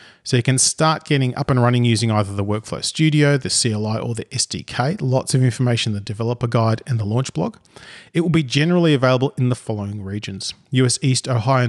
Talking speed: 210 wpm